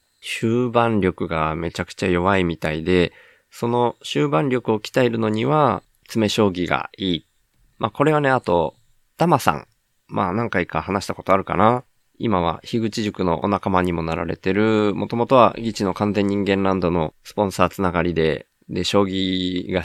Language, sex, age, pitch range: Japanese, male, 20-39, 90-120 Hz